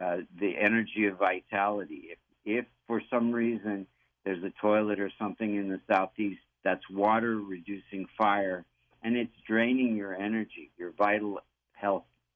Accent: American